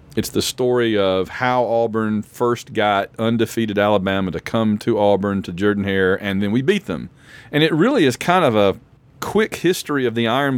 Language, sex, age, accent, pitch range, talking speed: English, male, 40-59, American, 105-135 Hz, 195 wpm